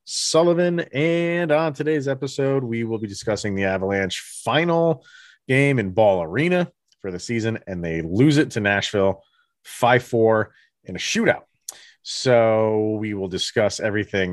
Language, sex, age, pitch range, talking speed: English, male, 30-49, 95-140 Hz, 140 wpm